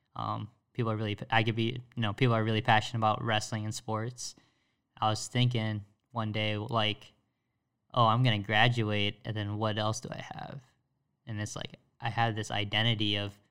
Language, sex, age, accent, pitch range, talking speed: English, male, 10-29, American, 110-125 Hz, 185 wpm